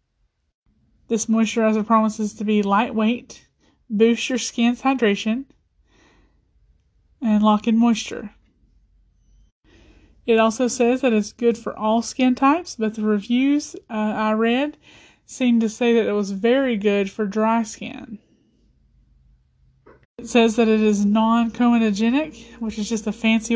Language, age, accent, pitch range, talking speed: English, 30-49, American, 210-240 Hz, 130 wpm